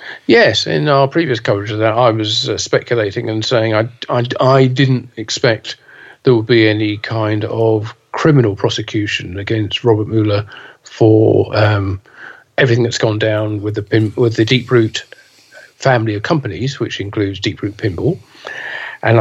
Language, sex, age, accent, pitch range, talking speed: English, male, 50-69, British, 110-130 Hz, 155 wpm